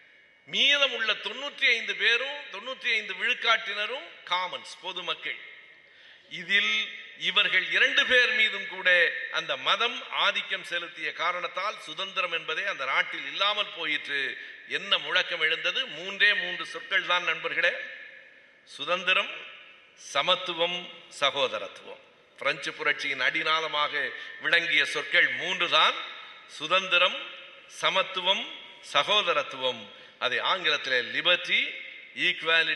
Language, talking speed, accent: Tamil, 75 wpm, native